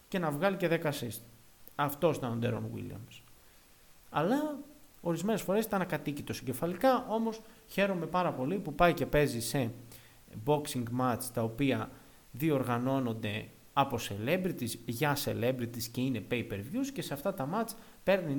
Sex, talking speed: male, 145 wpm